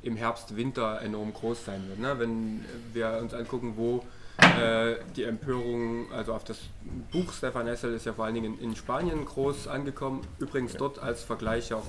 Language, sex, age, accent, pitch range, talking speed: German, male, 20-39, German, 110-135 Hz, 175 wpm